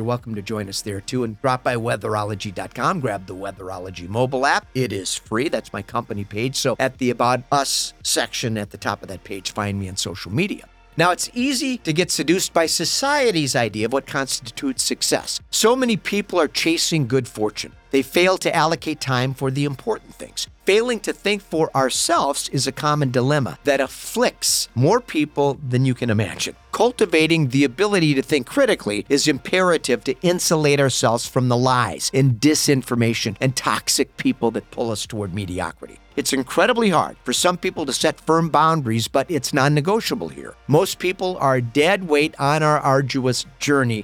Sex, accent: male, American